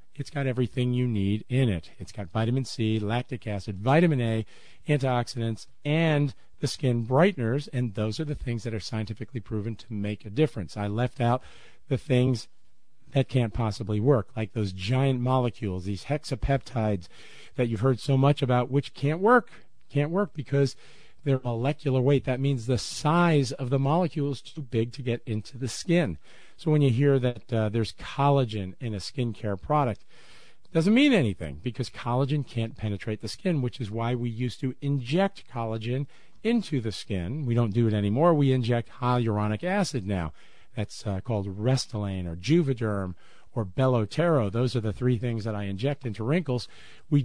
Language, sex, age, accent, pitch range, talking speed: English, male, 50-69, American, 110-140 Hz, 180 wpm